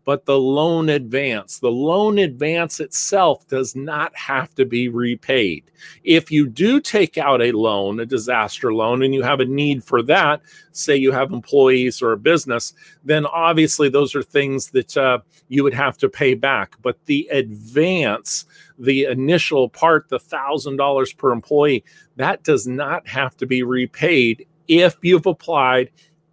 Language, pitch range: English, 130-160 Hz